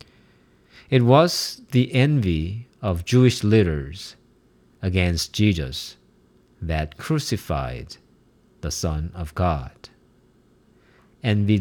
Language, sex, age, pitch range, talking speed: English, male, 50-69, 85-120 Hz, 85 wpm